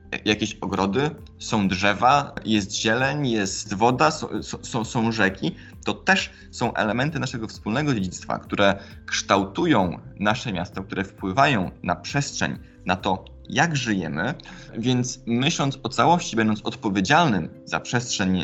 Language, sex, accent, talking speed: Polish, male, native, 125 wpm